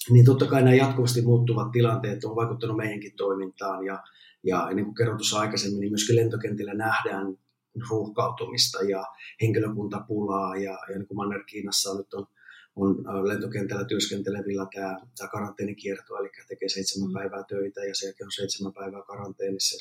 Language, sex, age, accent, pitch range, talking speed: Finnish, male, 30-49, native, 100-120 Hz, 155 wpm